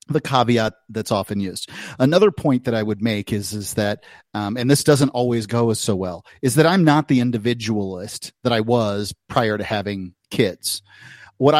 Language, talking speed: English, 190 wpm